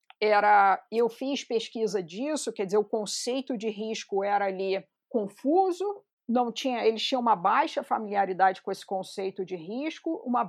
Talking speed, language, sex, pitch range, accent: 135 wpm, Portuguese, female, 200-270 Hz, Brazilian